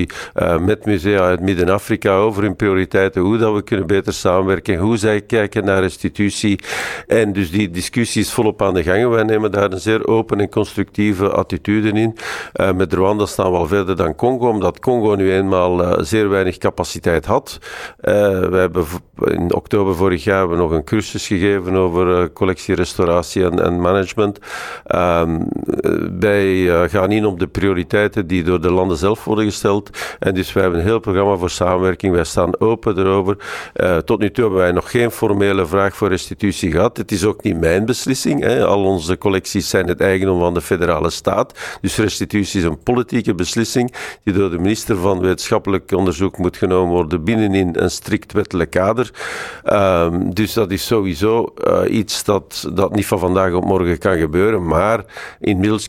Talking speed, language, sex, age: 185 wpm, Dutch, male, 50-69